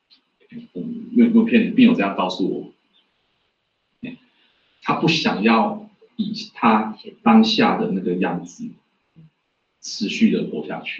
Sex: male